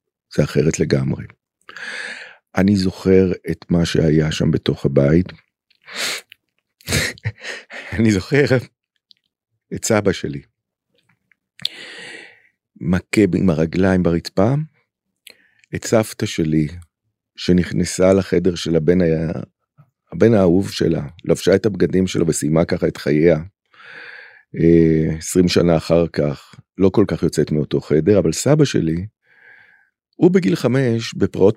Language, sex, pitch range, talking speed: Hebrew, male, 85-110 Hz, 105 wpm